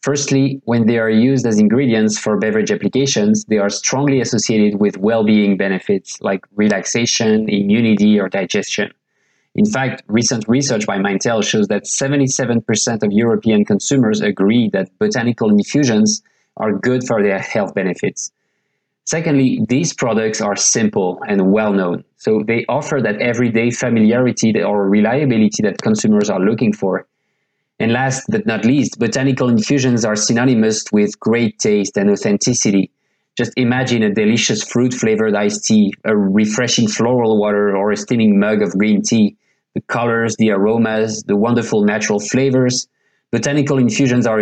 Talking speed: 145 wpm